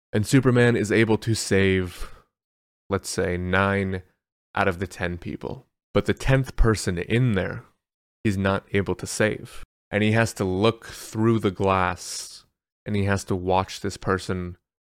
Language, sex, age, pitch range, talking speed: English, male, 20-39, 95-115 Hz, 160 wpm